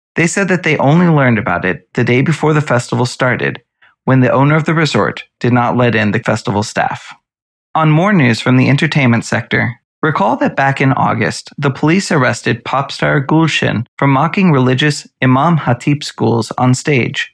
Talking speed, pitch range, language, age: 185 wpm, 125-160 Hz, English, 30-49